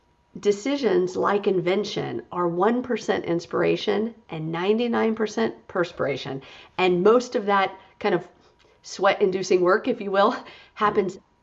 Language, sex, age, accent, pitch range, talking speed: English, female, 50-69, American, 175-220 Hz, 110 wpm